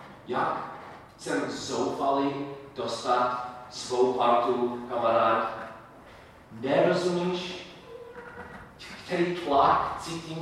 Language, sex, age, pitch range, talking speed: Czech, male, 40-59, 120-155 Hz, 65 wpm